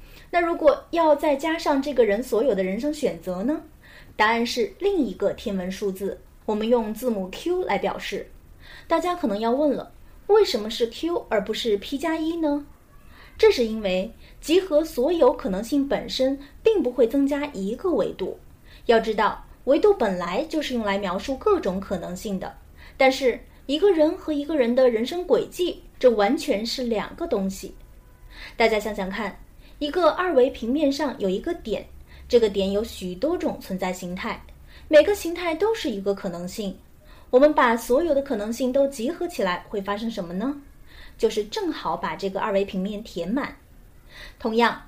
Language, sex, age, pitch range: Chinese, female, 20-39, 205-310 Hz